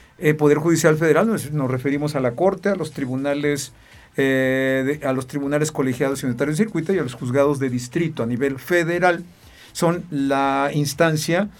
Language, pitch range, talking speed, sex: Spanish, 135-175 Hz, 180 wpm, male